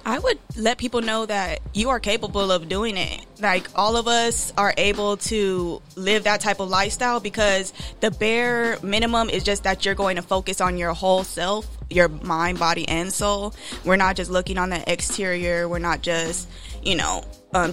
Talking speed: 195 wpm